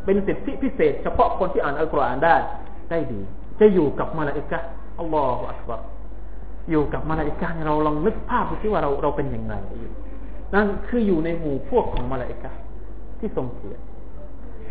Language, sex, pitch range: Thai, male, 155-220 Hz